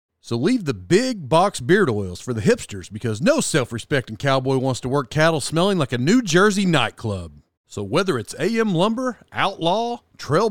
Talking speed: 175 wpm